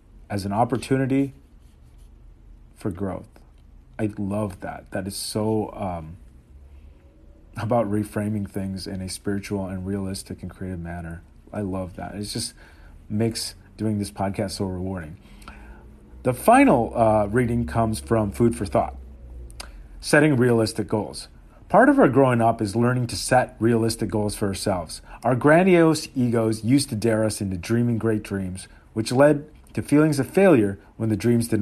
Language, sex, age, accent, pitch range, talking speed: English, male, 40-59, American, 95-135 Hz, 150 wpm